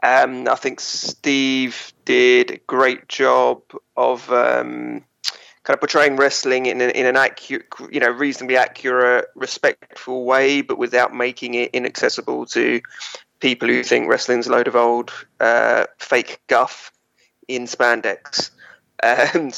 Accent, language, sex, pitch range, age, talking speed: British, English, male, 125-145 Hz, 20-39, 140 wpm